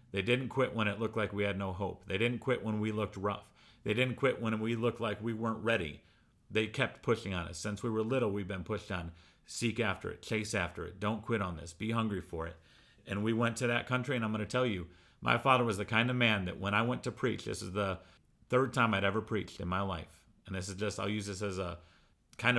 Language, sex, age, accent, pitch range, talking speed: English, male, 40-59, American, 95-115 Hz, 270 wpm